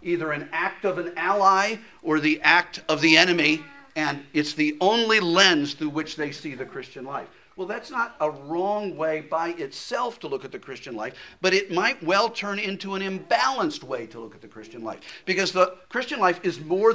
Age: 50-69